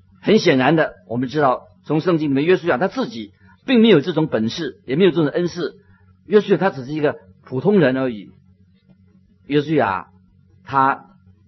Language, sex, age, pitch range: Chinese, male, 50-69, 100-160 Hz